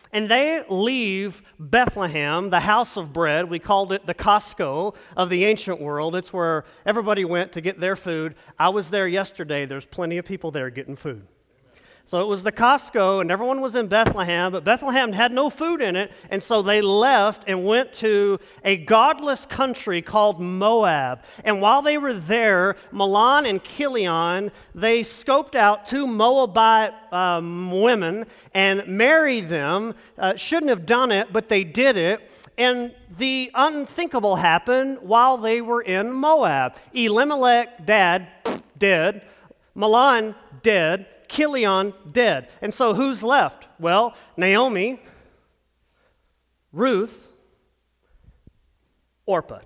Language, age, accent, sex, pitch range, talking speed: English, 40-59, American, male, 180-245 Hz, 140 wpm